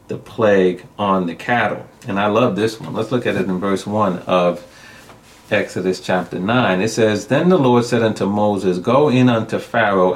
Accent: American